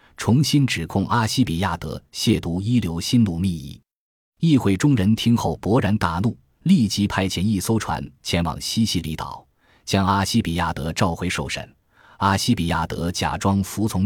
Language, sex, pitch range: Chinese, male, 85-115 Hz